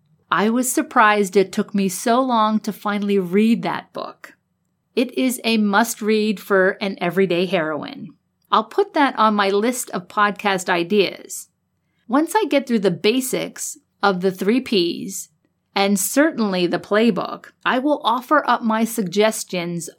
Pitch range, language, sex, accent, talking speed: 190-245 Hz, English, female, American, 150 wpm